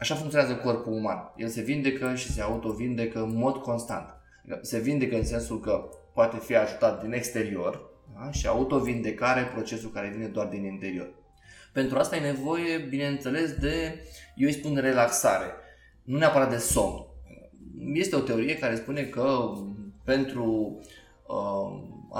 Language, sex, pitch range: Romanian, male, 110-130 Hz